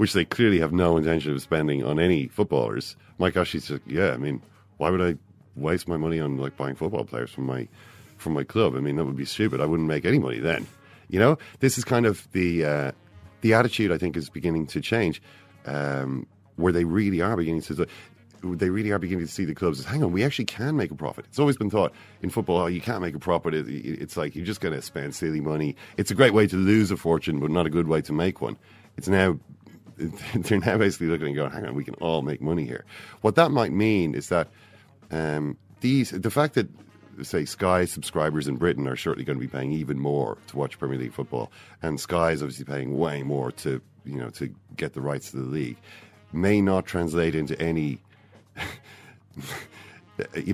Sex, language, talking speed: male, English, 225 wpm